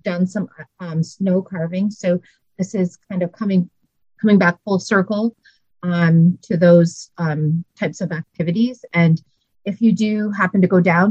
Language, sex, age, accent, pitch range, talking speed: English, female, 30-49, American, 165-205 Hz, 160 wpm